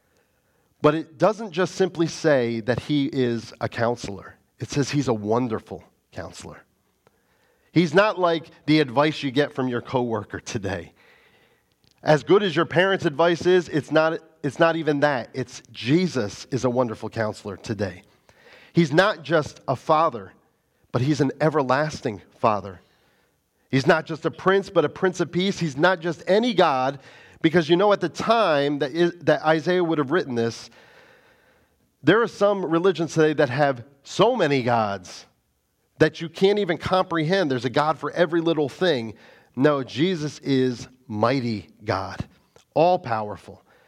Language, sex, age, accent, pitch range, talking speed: English, male, 40-59, American, 125-170 Hz, 155 wpm